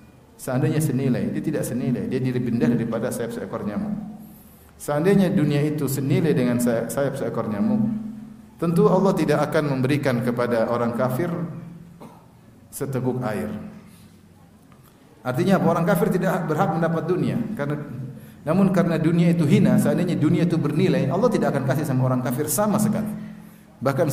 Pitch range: 125-185 Hz